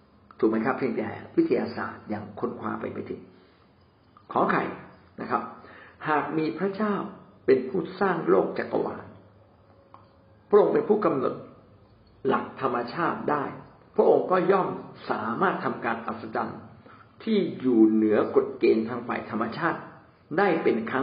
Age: 60-79